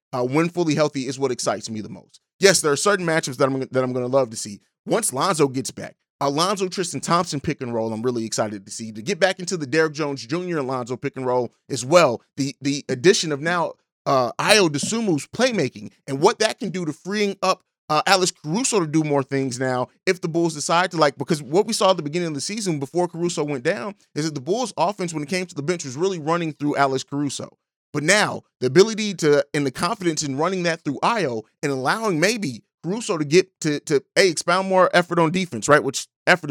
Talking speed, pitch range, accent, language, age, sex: 240 wpm, 140-185 Hz, American, English, 30-49, male